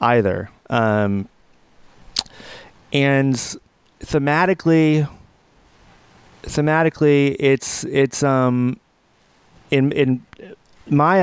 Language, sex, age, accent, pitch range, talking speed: English, male, 30-49, American, 110-135 Hz, 60 wpm